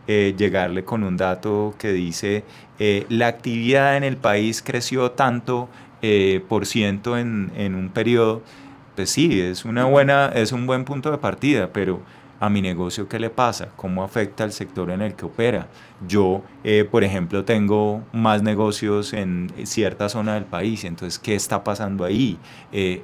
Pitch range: 95-115 Hz